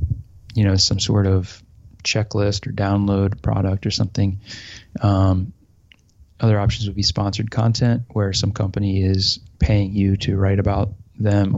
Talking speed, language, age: 145 wpm, English, 20-39